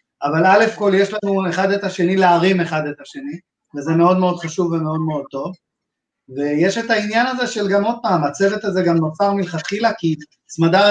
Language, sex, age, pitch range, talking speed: Hebrew, male, 30-49, 170-195 Hz, 180 wpm